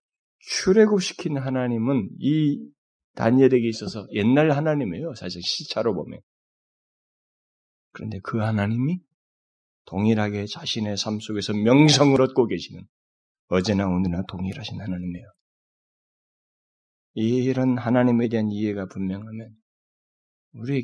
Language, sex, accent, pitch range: Korean, male, native, 95-125 Hz